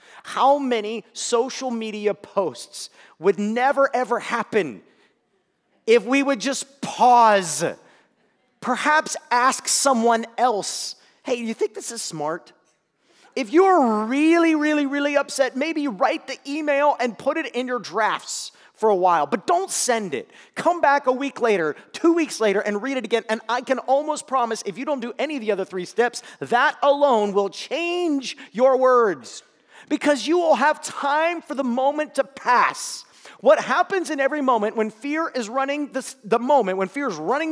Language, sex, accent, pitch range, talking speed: English, male, American, 220-285 Hz, 170 wpm